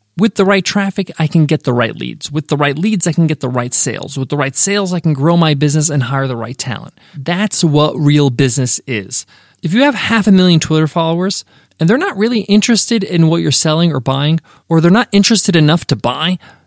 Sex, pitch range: male, 145-200 Hz